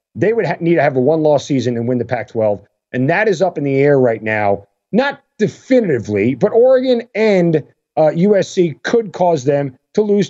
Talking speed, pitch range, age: 190 wpm, 130-200 Hz, 40-59